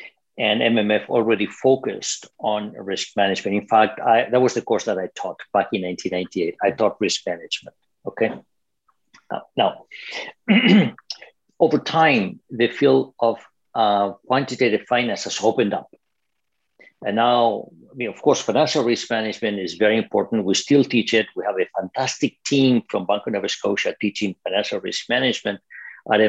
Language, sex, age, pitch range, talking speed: English, male, 60-79, 105-135 Hz, 150 wpm